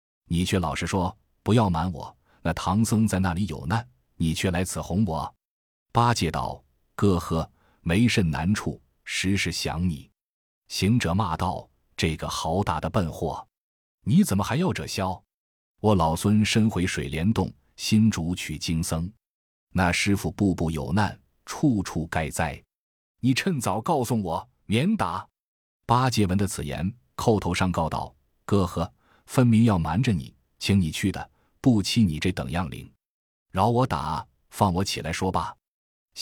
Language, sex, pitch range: Chinese, male, 80-110 Hz